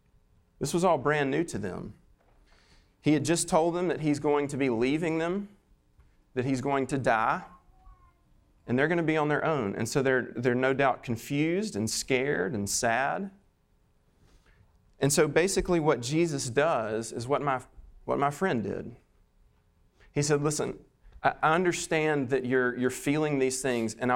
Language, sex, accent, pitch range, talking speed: English, male, American, 120-155 Hz, 170 wpm